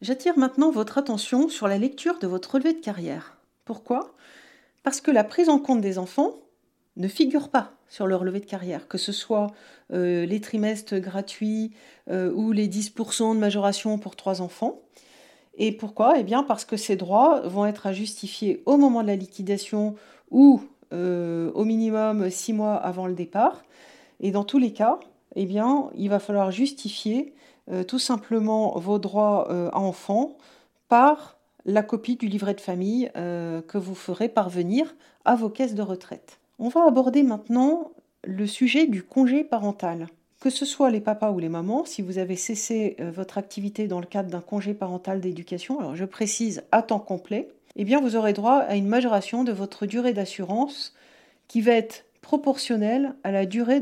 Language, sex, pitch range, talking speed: French, female, 195-255 Hz, 180 wpm